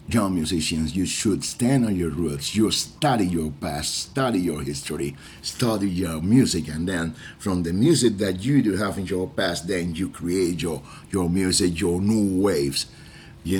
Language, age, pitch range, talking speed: English, 50-69, 80-100 Hz, 175 wpm